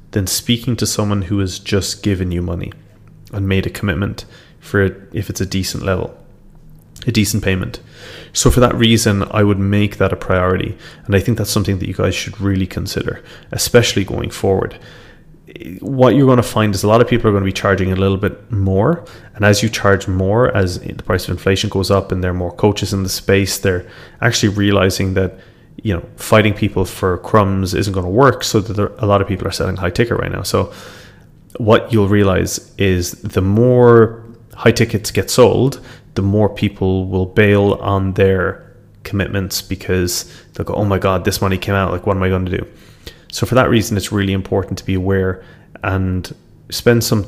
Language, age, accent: English, 20-39, Irish